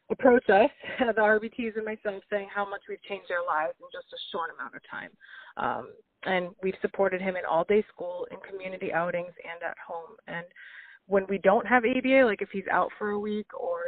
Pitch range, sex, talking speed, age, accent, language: 180-245 Hz, female, 210 wpm, 30-49, American, English